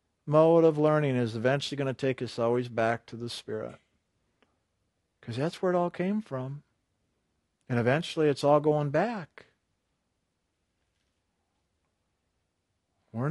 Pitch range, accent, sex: 95-160 Hz, American, male